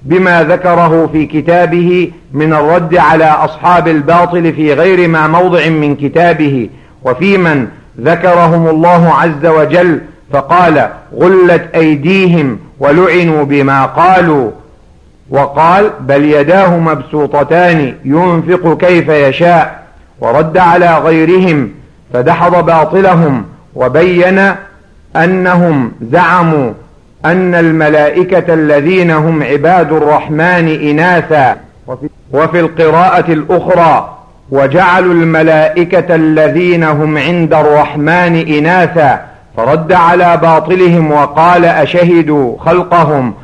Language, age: Arabic, 50-69